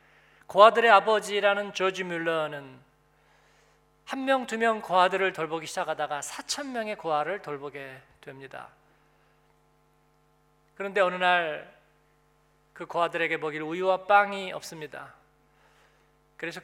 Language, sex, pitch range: Korean, male, 155-210 Hz